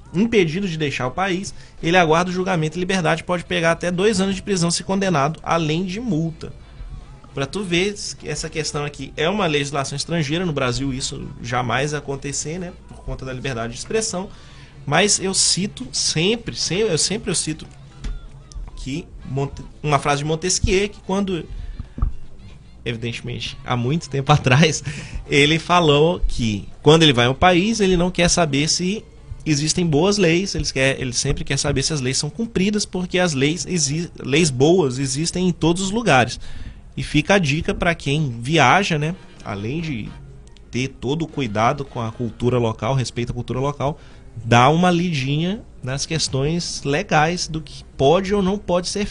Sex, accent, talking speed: male, Brazilian, 165 wpm